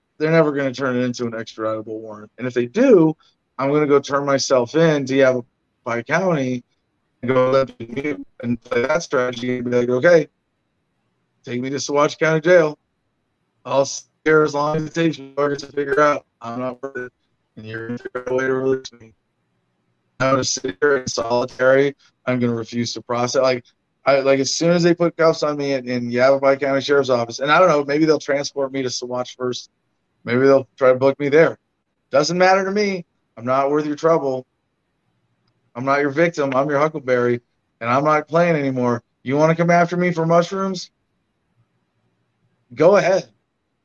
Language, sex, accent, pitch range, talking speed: English, male, American, 125-165 Hz, 205 wpm